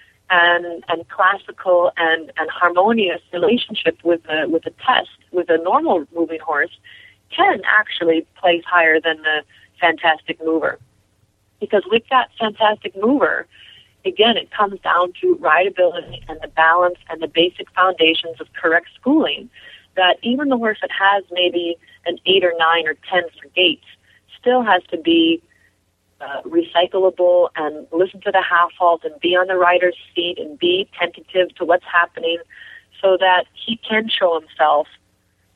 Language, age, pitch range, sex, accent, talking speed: English, 30-49, 165-210 Hz, female, American, 155 wpm